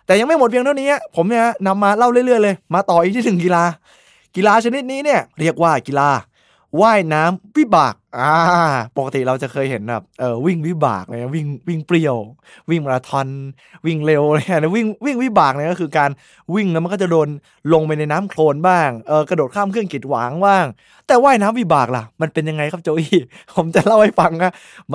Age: 20-39